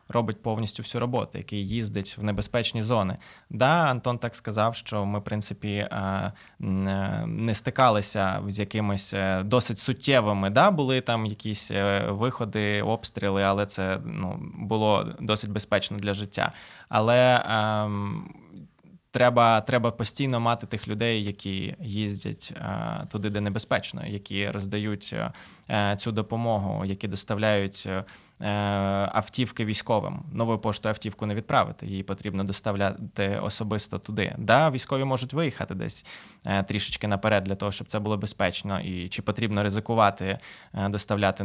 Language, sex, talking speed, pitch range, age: Ukrainian, male, 125 wpm, 100-120 Hz, 20-39